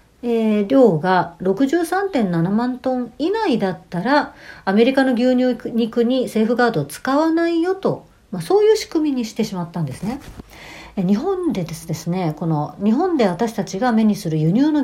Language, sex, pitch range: Japanese, female, 180-275 Hz